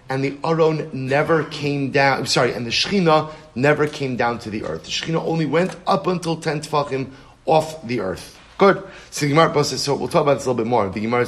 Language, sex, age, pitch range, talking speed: English, male, 30-49, 125-150 Hz, 230 wpm